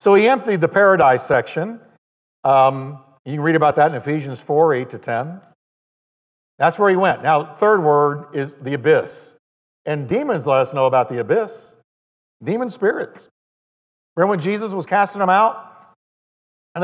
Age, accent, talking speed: 50-69, American, 165 wpm